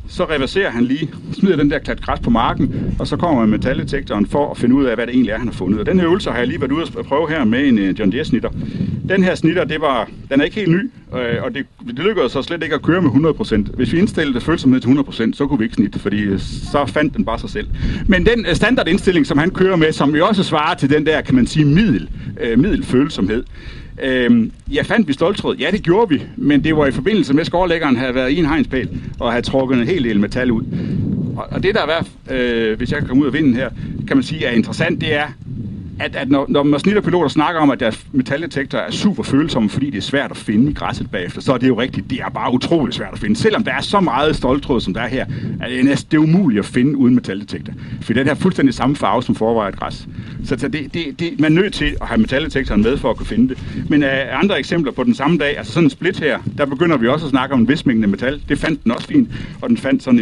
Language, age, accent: Danish, 60-79, native